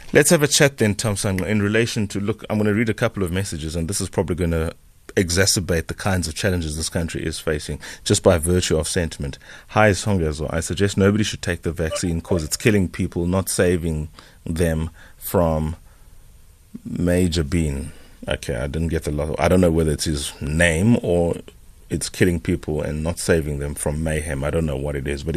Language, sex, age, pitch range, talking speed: English, male, 30-49, 75-100 Hz, 205 wpm